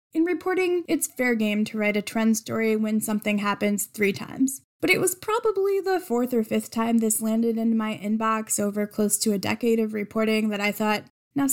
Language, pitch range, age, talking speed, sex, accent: English, 210-255 Hz, 10-29, 210 wpm, female, American